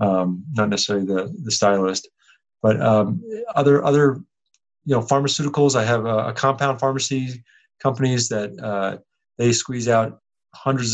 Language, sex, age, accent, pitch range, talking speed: English, male, 30-49, American, 100-125 Hz, 145 wpm